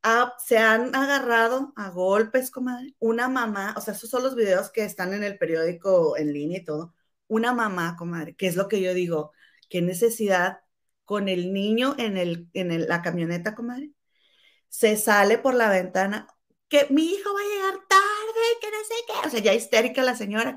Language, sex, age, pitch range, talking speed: Spanish, female, 30-49, 185-255 Hz, 190 wpm